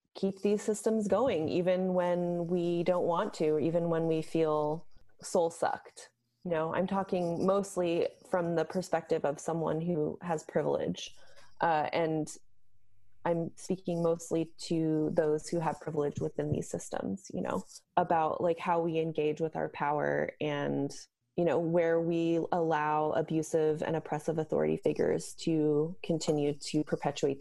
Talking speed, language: 150 wpm, English